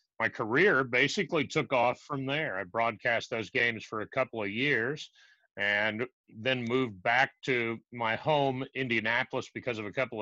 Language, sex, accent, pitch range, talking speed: English, male, American, 110-135 Hz, 165 wpm